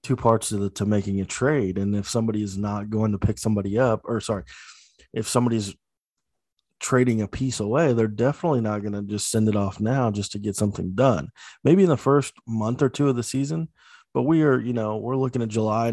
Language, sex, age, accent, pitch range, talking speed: English, male, 20-39, American, 110-130 Hz, 225 wpm